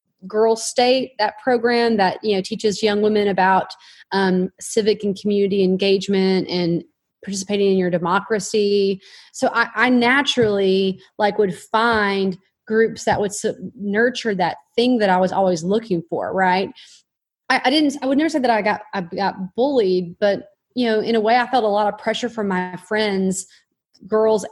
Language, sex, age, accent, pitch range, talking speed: English, female, 30-49, American, 190-225 Hz, 170 wpm